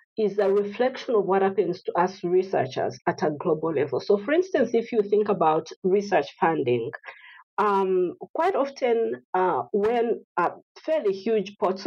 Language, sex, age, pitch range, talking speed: English, female, 40-59, 190-305 Hz, 155 wpm